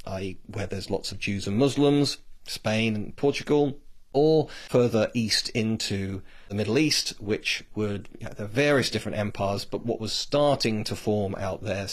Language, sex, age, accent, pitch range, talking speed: English, male, 40-59, British, 105-145 Hz, 155 wpm